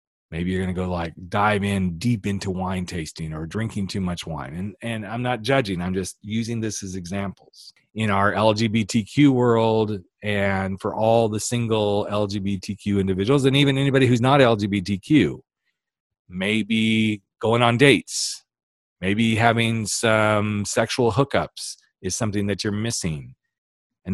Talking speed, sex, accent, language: 150 wpm, male, American, English